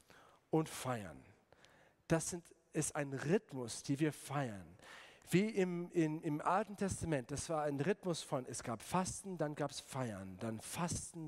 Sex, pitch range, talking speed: male, 130-170 Hz, 160 wpm